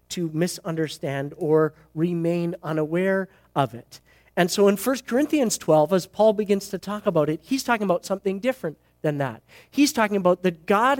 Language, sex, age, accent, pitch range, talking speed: English, male, 40-59, American, 155-205 Hz, 175 wpm